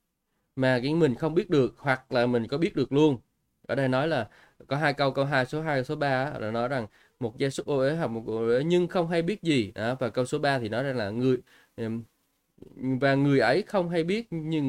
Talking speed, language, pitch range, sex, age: 250 wpm, Vietnamese, 120-165 Hz, male, 20-39